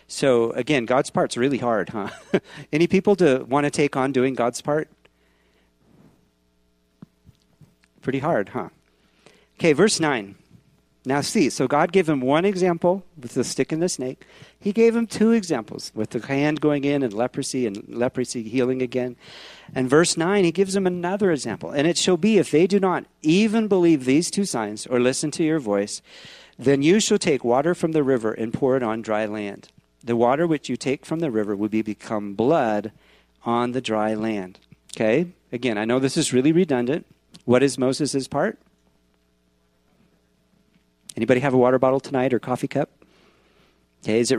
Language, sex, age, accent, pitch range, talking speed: English, male, 50-69, American, 110-160 Hz, 180 wpm